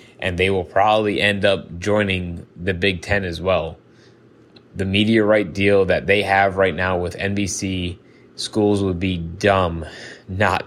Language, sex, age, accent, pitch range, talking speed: English, male, 20-39, American, 95-110 Hz, 155 wpm